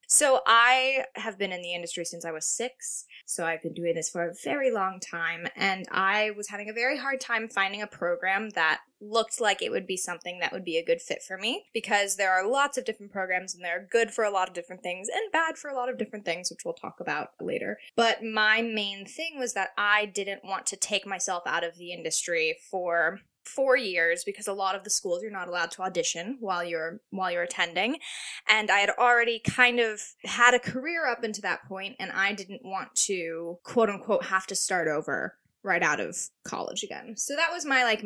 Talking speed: 230 wpm